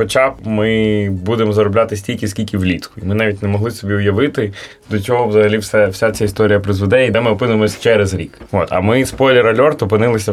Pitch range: 105-120 Hz